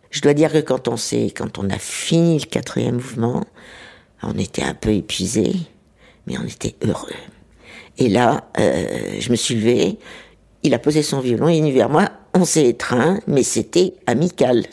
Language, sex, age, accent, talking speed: French, female, 60-79, French, 185 wpm